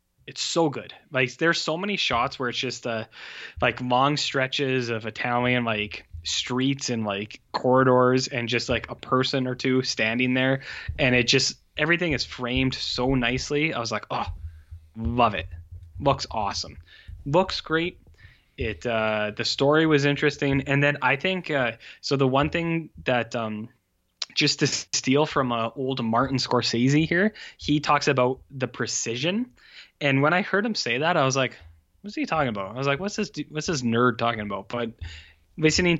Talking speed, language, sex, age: 175 wpm, English, male, 10-29